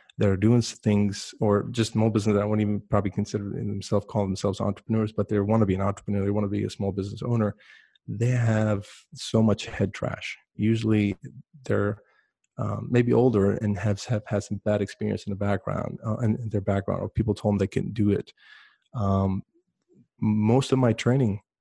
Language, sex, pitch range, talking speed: English, male, 100-115 Hz, 195 wpm